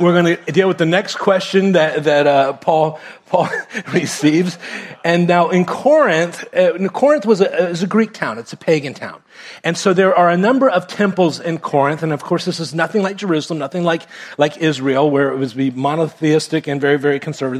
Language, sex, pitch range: English, male, 145-175 Hz